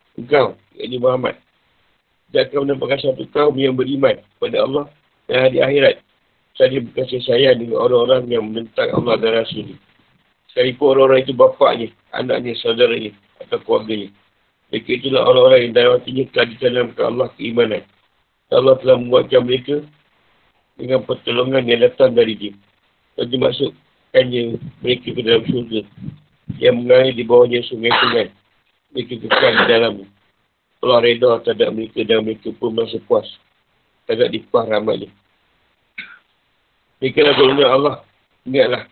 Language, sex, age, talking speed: Malay, male, 50-69, 135 wpm